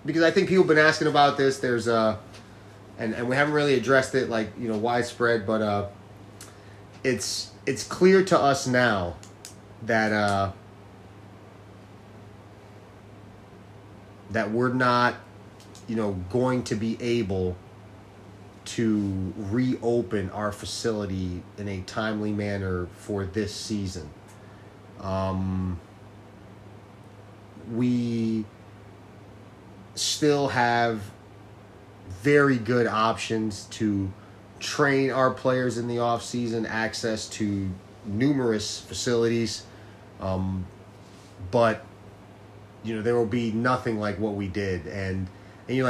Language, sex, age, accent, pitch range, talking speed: English, male, 30-49, American, 100-120 Hz, 115 wpm